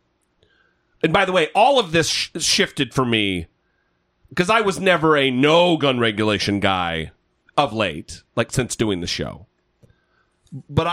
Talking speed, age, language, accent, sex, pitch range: 150 wpm, 40-59, English, American, male, 120-195 Hz